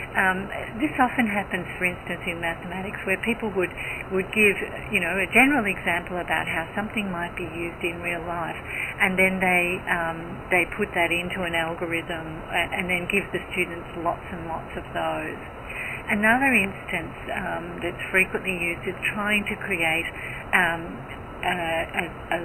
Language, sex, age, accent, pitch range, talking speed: German, female, 60-79, Australian, 175-210 Hz, 165 wpm